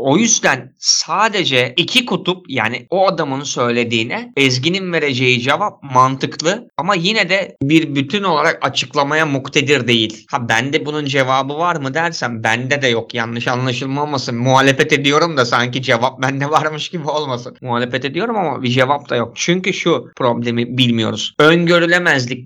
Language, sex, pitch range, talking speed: Turkish, male, 125-160 Hz, 145 wpm